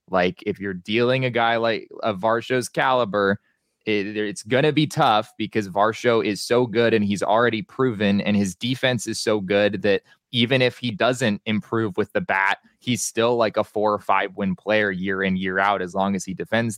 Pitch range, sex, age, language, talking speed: 100-130 Hz, male, 20-39, English, 205 wpm